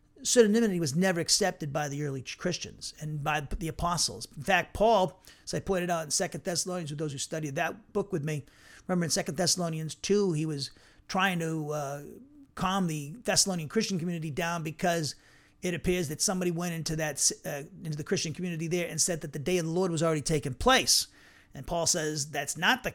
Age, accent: 40-59, American